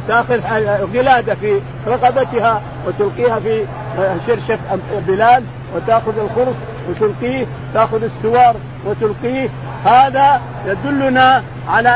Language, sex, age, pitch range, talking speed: Arabic, male, 50-69, 200-280 Hz, 85 wpm